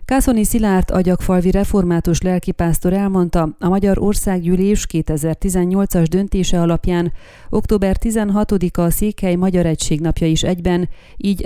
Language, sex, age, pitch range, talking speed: Hungarian, female, 30-49, 165-195 Hz, 115 wpm